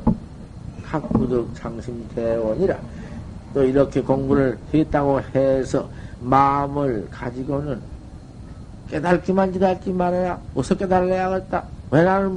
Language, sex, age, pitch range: Korean, male, 50-69, 120-175 Hz